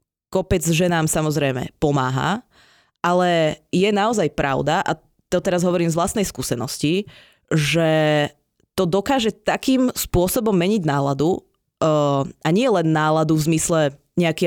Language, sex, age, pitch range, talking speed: Czech, female, 20-39, 155-205 Hz, 125 wpm